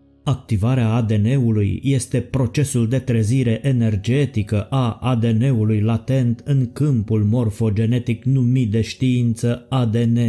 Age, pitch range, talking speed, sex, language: 30-49, 110-130 Hz, 100 wpm, male, Romanian